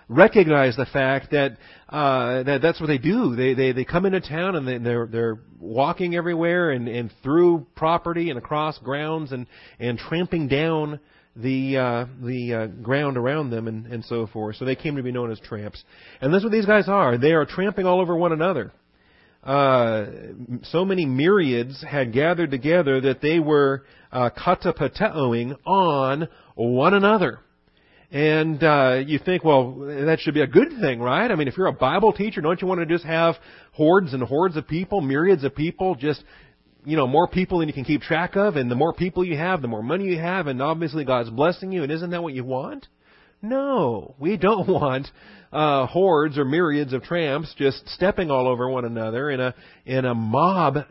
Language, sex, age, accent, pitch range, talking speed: English, male, 40-59, American, 125-170 Hz, 200 wpm